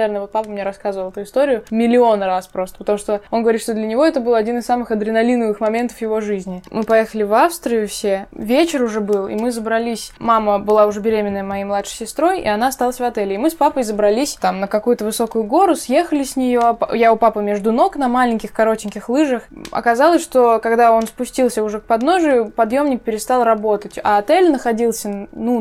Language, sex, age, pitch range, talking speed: Russian, female, 20-39, 205-245 Hz, 205 wpm